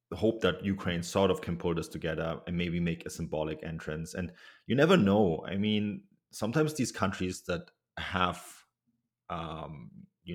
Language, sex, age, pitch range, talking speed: English, male, 30-49, 85-110 Hz, 170 wpm